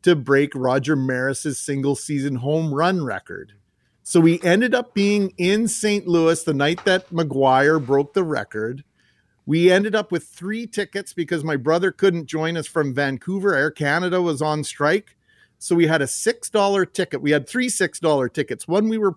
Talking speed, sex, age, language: 175 wpm, male, 40-59, English